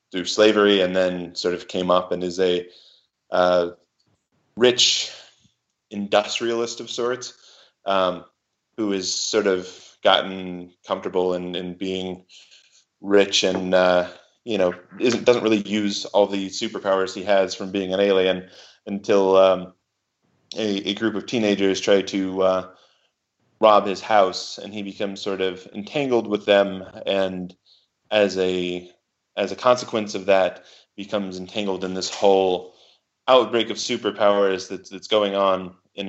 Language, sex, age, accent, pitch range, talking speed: English, male, 20-39, American, 90-100 Hz, 140 wpm